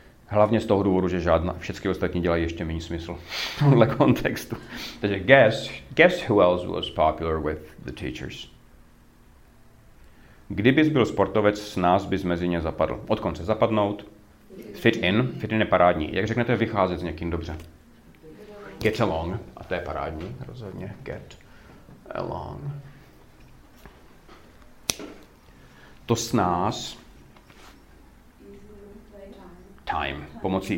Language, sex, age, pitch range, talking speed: Czech, male, 40-59, 80-110 Hz, 120 wpm